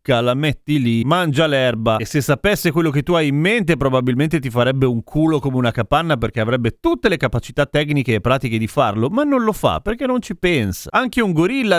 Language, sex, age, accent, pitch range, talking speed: Italian, male, 30-49, native, 130-170 Hz, 220 wpm